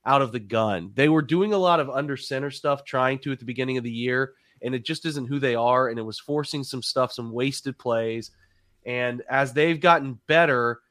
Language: English